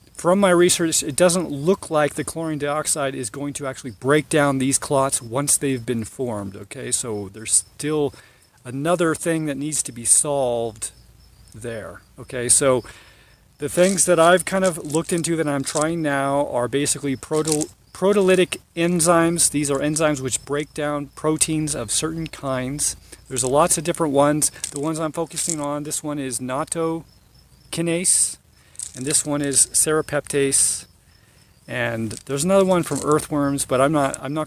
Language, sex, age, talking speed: English, male, 40-59, 160 wpm